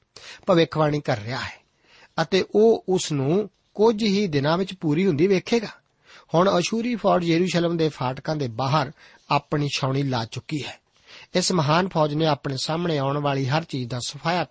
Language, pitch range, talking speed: Punjabi, 135-180 Hz, 170 wpm